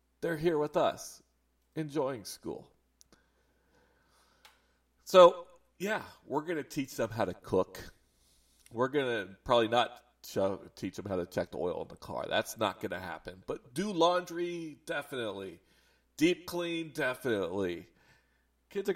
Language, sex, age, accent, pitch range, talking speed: English, male, 40-59, American, 95-155 Hz, 145 wpm